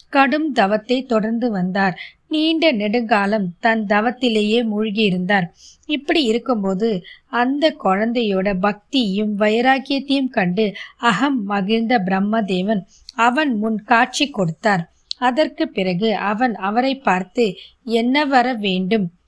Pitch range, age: 205-255 Hz, 20-39